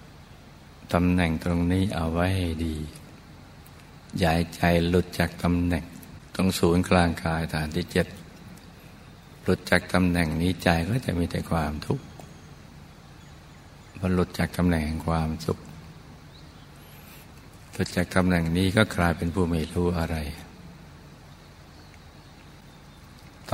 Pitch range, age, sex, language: 80-90 Hz, 60-79, male, Thai